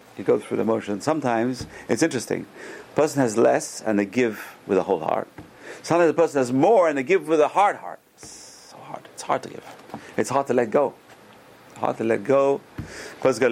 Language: English